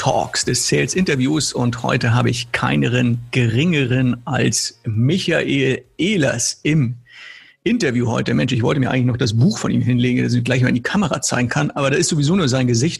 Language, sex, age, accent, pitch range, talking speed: German, male, 50-69, German, 125-155 Hz, 200 wpm